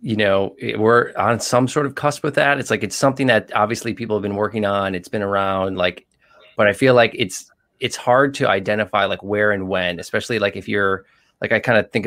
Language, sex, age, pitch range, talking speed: English, male, 20-39, 100-115 Hz, 235 wpm